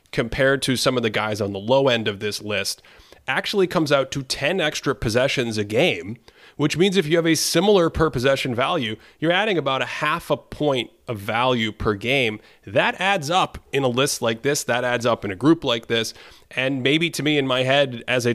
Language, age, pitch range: English, 30-49, 110-140 Hz